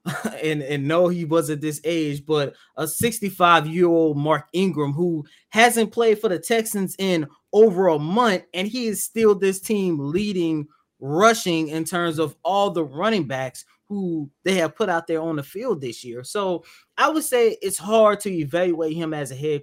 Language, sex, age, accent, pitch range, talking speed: English, male, 20-39, American, 150-195 Hz, 185 wpm